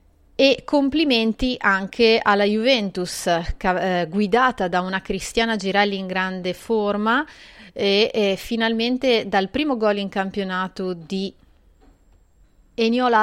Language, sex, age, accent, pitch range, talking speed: Italian, female, 30-49, native, 185-225 Hz, 110 wpm